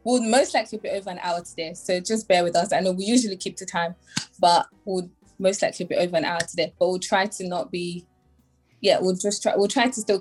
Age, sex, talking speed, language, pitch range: 20-39, female, 255 wpm, English, 180-240 Hz